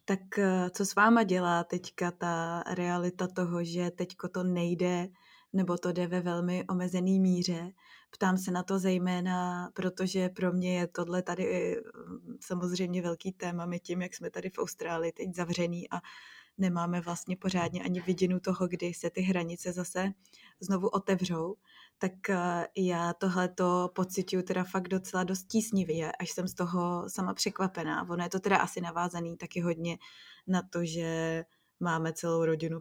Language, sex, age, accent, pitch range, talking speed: Czech, female, 20-39, native, 175-185 Hz, 155 wpm